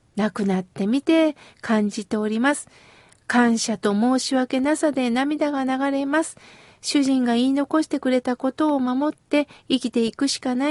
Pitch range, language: 250-330 Hz, Japanese